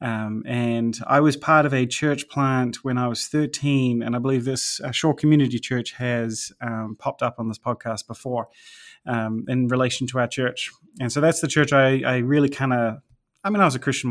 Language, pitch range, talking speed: English, 125-145 Hz, 215 wpm